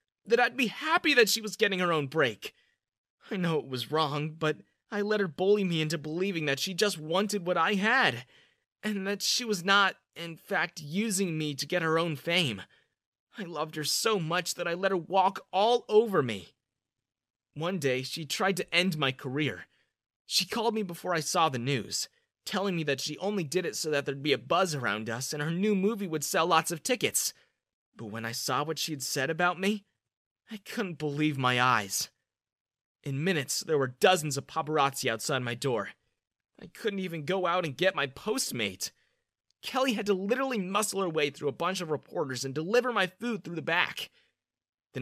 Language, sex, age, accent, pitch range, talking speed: English, male, 20-39, American, 140-195 Hz, 200 wpm